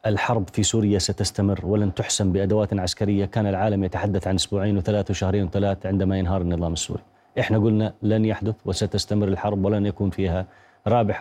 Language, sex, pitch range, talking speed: Arabic, male, 100-135 Hz, 160 wpm